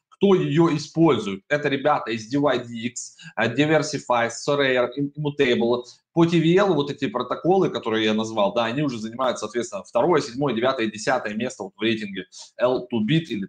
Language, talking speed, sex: Russian, 145 wpm, male